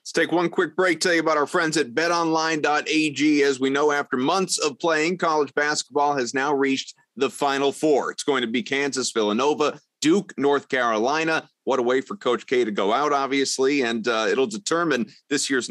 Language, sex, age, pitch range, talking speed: English, male, 30-49, 115-145 Hz, 200 wpm